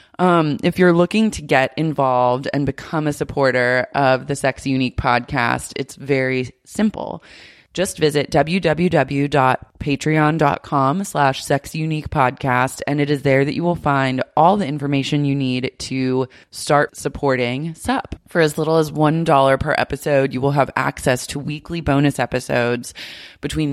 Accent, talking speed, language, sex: American, 150 wpm, English, female